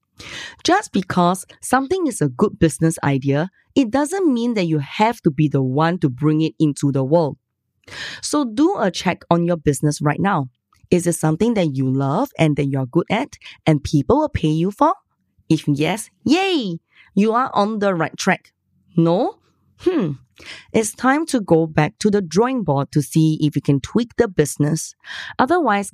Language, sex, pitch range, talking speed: English, female, 150-205 Hz, 185 wpm